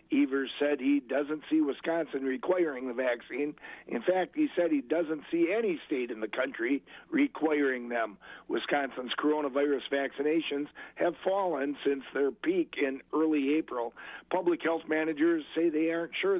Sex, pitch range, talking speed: male, 145-180 Hz, 150 wpm